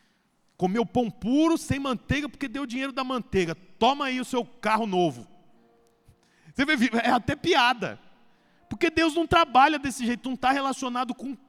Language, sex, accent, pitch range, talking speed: Portuguese, male, Brazilian, 165-250 Hz, 165 wpm